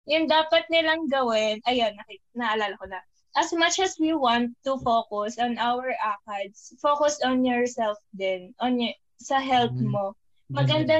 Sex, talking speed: female, 155 wpm